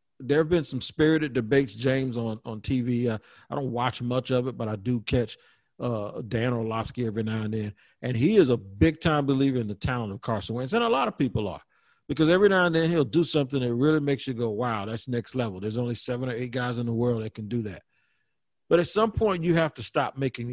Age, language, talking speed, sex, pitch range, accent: 50-69, English, 250 wpm, male, 120-145 Hz, American